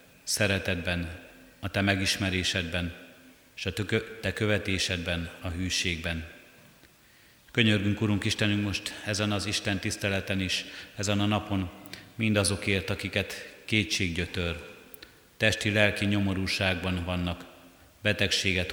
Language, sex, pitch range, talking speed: Hungarian, male, 90-105 Hz, 95 wpm